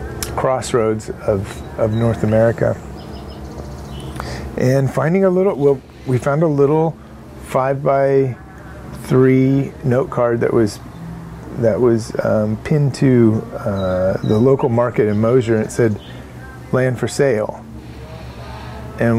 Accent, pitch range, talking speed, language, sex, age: American, 105-130 Hz, 120 wpm, English, male, 30-49